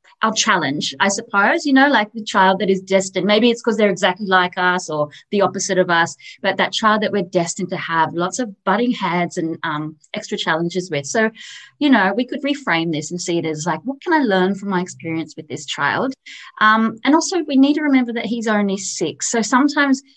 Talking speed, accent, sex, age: 225 wpm, Australian, female, 30-49